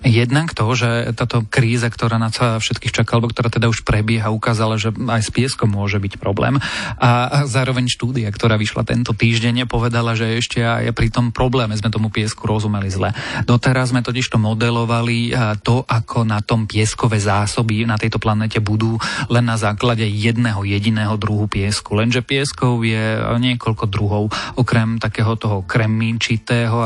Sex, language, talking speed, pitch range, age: male, Slovak, 160 wpm, 110-125 Hz, 30-49